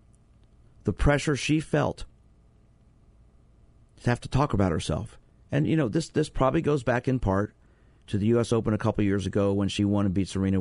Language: English